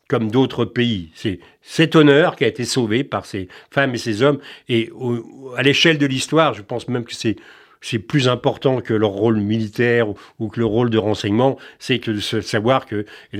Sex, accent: male, French